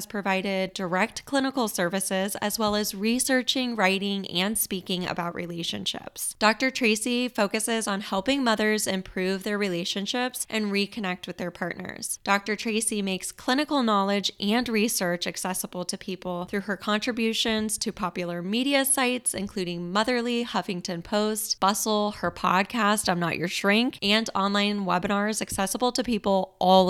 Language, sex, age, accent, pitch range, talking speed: English, female, 10-29, American, 185-220 Hz, 140 wpm